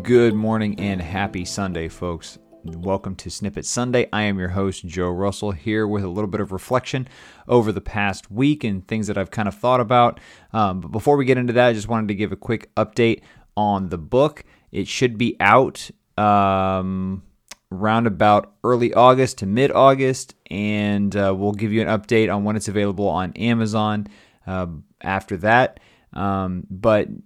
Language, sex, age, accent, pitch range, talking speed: English, male, 30-49, American, 95-115 Hz, 185 wpm